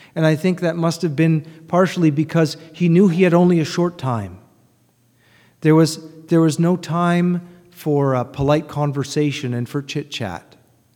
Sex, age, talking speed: male, 40-59, 170 wpm